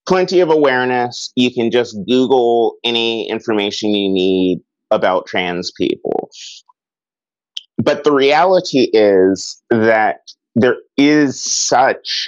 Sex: male